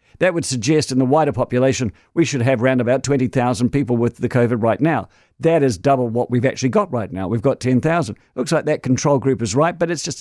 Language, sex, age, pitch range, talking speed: English, male, 50-69, 120-175 Hz, 240 wpm